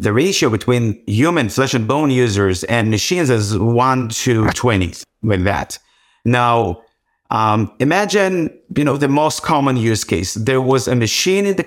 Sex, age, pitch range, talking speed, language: male, 50-69, 110-145 Hz, 165 wpm, English